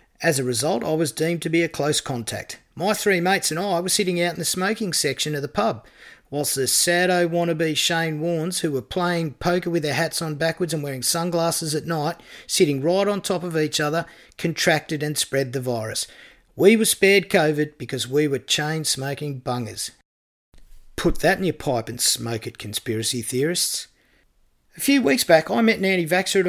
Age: 40-59